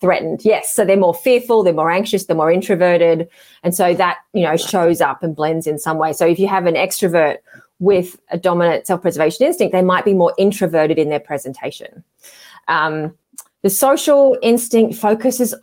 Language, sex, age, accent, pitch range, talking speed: English, female, 30-49, Australian, 160-195 Hz, 185 wpm